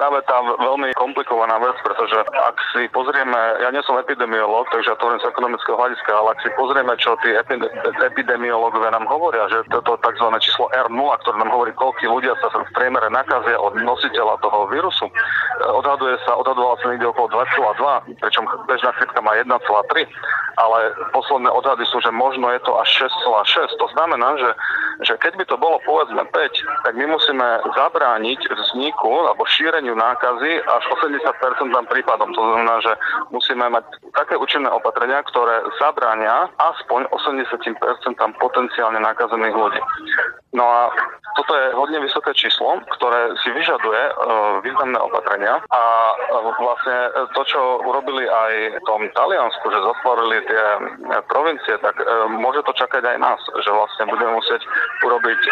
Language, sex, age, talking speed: Slovak, male, 40-59, 155 wpm